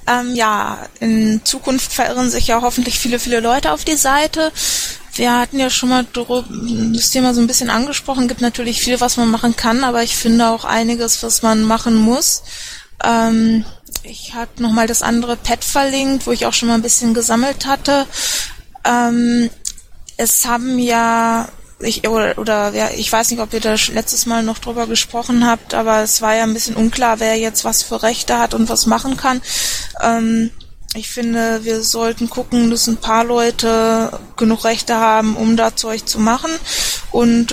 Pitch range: 225-245 Hz